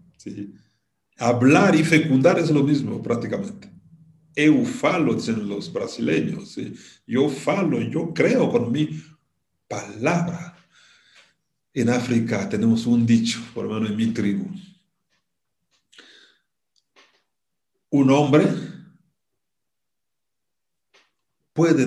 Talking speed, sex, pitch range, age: 95 wpm, male, 110-165 Hz, 50-69